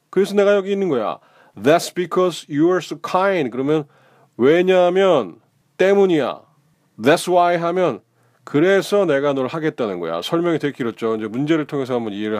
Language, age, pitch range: Korean, 40-59, 125-175 Hz